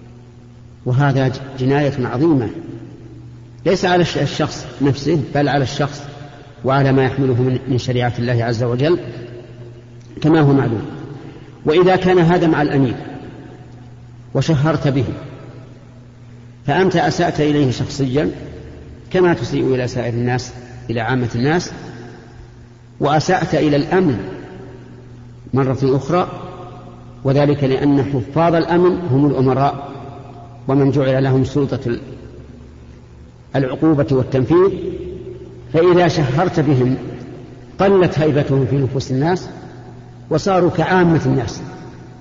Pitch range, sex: 125-155 Hz, male